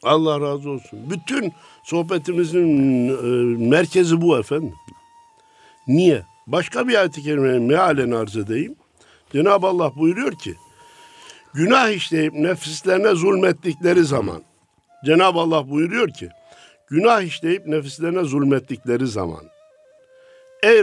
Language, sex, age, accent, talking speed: Turkish, male, 60-79, native, 105 wpm